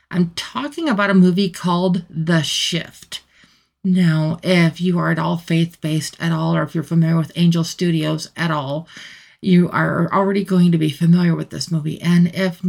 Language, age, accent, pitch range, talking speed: English, 50-69, American, 160-185 Hz, 180 wpm